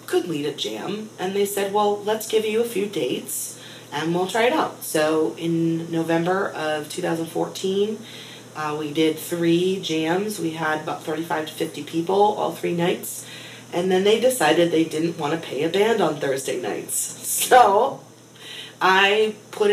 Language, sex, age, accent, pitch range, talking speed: English, female, 30-49, American, 155-190 Hz, 170 wpm